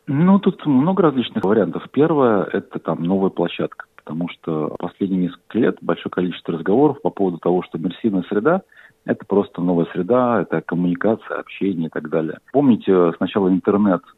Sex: male